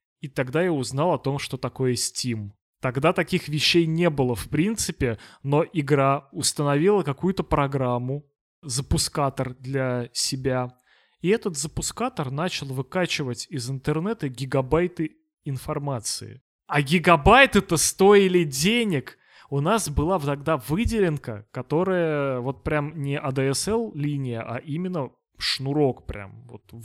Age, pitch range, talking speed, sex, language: 20-39, 135-180 Hz, 115 wpm, male, Russian